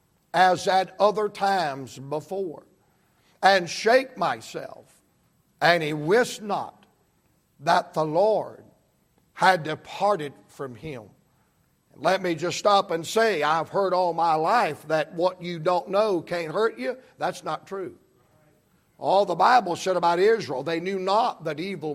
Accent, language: American, English